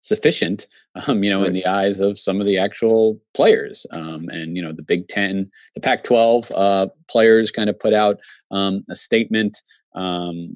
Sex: male